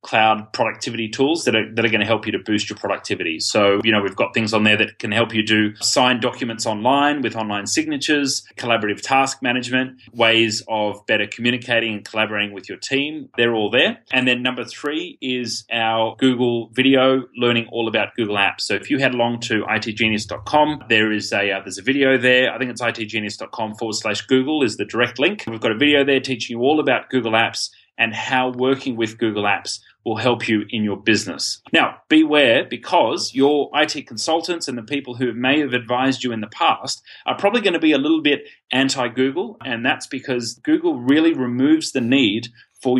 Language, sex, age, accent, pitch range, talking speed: English, male, 30-49, Australian, 110-130 Hz, 200 wpm